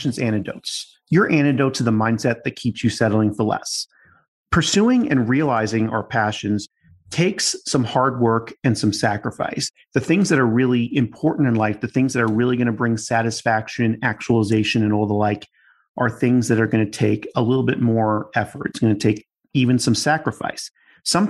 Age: 40-59